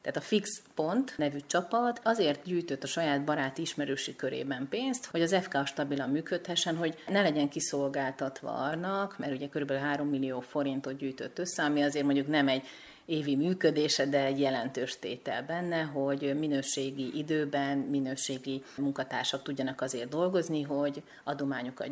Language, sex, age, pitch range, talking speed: Hungarian, female, 30-49, 140-155 Hz, 150 wpm